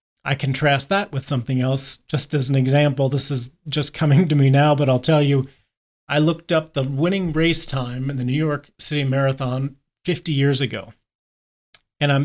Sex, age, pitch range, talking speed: male, 40-59, 130-150 Hz, 185 wpm